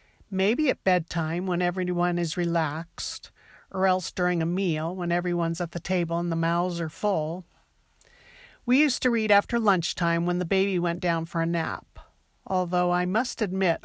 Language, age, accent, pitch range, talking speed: English, 50-69, American, 170-210 Hz, 175 wpm